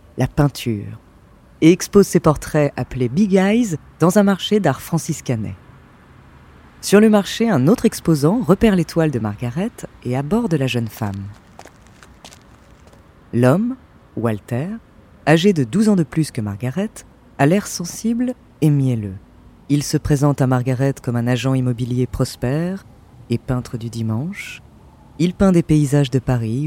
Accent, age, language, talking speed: French, 30-49, French, 145 wpm